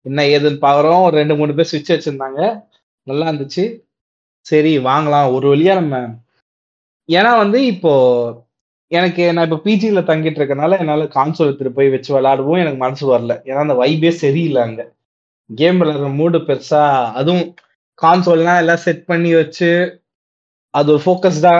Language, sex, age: Tamil, male, 20-39